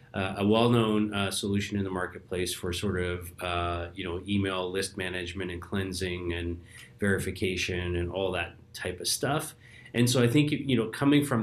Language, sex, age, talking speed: English, male, 30-49, 185 wpm